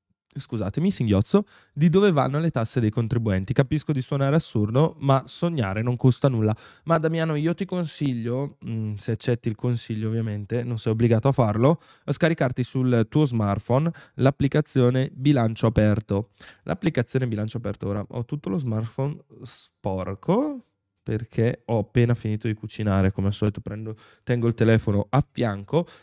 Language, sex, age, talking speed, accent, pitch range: Italian, male, 10-29, 150 wpm, native, 115-140 Hz